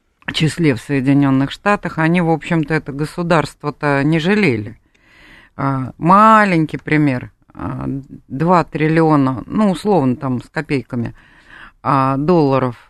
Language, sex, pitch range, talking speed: Russian, female, 135-175 Hz, 100 wpm